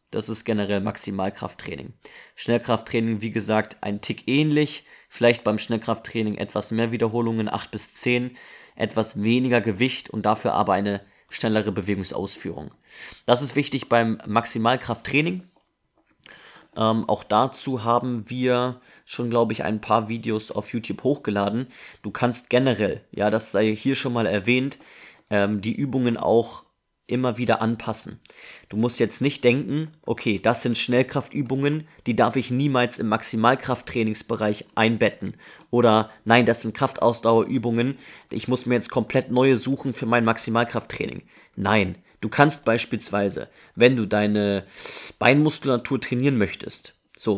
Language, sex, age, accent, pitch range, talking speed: German, male, 20-39, German, 110-125 Hz, 135 wpm